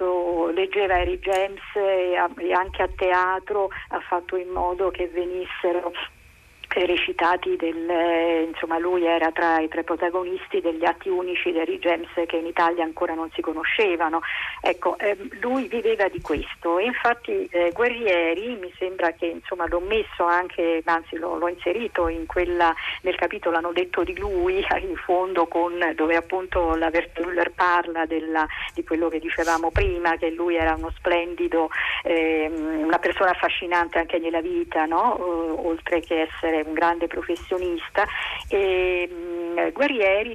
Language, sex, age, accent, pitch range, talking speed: Italian, female, 40-59, native, 170-200 Hz, 150 wpm